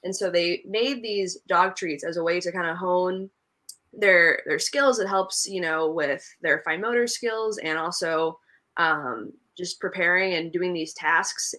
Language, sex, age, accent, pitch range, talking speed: English, female, 20-39, American, 170-200 Hz, 180 wpm